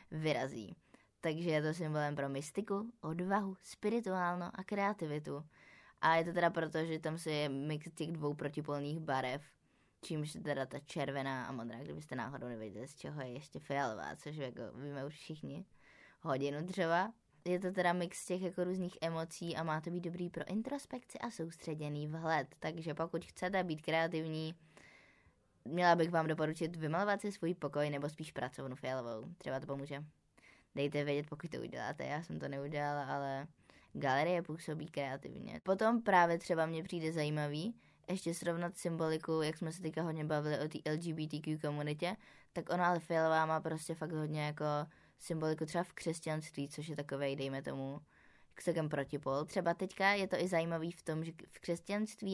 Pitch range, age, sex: 145-175 Hz, 20-39, female